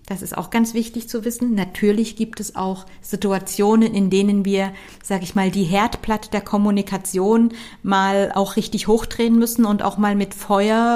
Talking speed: 175 wpm